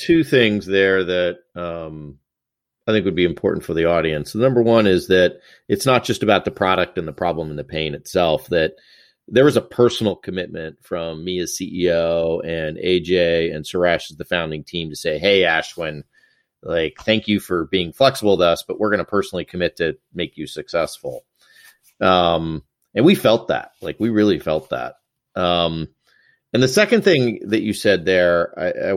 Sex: male